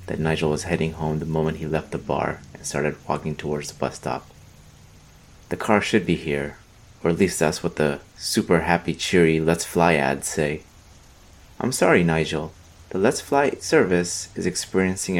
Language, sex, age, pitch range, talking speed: English, male, 30-49, 80-95 Hz, 180 wpm